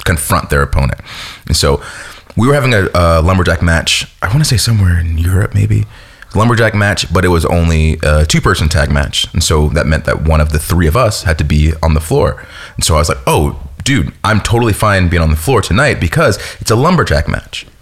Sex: male